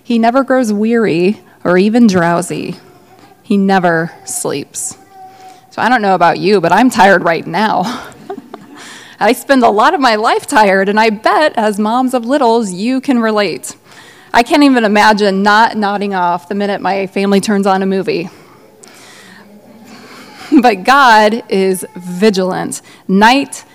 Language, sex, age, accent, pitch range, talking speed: English, female, 20-39, American, 200-255 Hz, 150 wpm